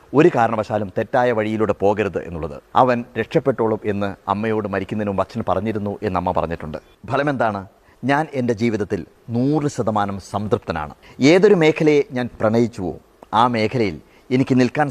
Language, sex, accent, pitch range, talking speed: Malayalam, male, native, 105-145 Hz, 115 wpm